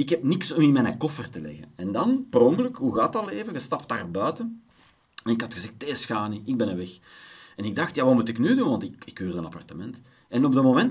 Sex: male